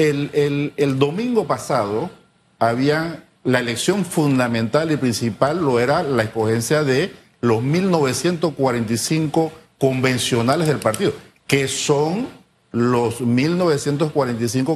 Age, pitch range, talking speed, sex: 50-69, 115-150 Hz, 100 wpm, male